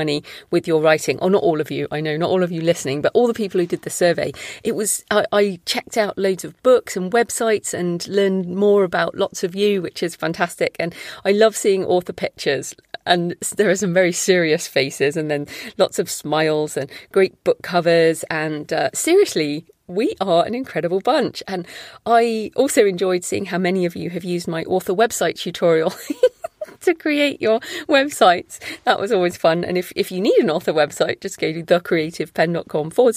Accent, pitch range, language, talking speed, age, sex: British, 165-210 Hz, English, 200 wpm, 40-59, female